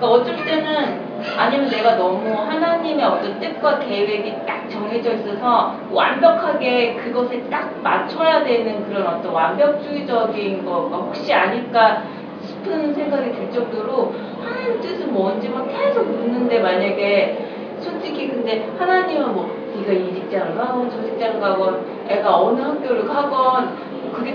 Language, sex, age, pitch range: Korean, female, 30-49, 220-290 Hz